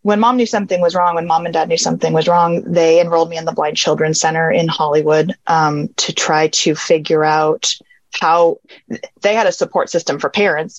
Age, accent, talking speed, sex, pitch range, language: 30-49, American, 210 wpm, female, 170-210 Hz, English